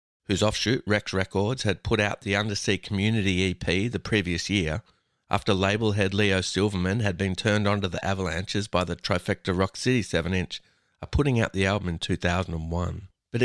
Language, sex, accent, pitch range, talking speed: English, male, Australian, 95-115 Hz, 175 wpm